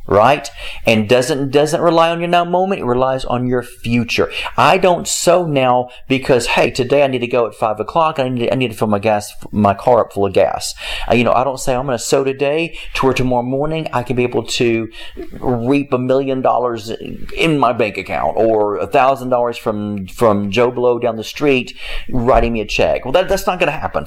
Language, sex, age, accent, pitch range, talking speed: English, male, 40-59, American, 120-165 Hz, 235 wpm